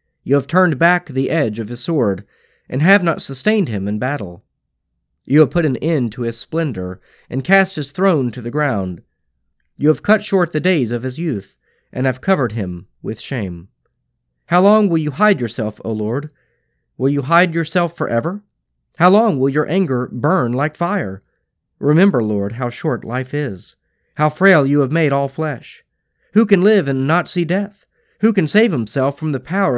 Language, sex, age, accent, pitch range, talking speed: English, male, 40-59, American, 105-165 Hz, 190 wpm